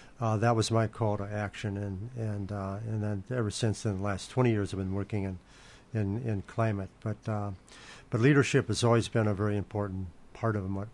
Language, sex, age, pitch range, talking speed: English, male, 50-69, 100-115 Hz, 215 wpm